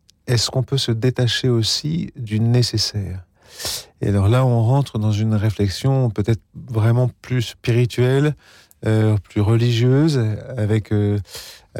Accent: French